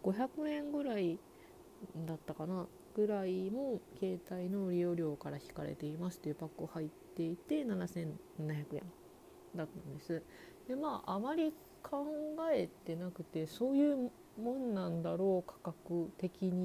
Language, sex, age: Japanese, female, 40-59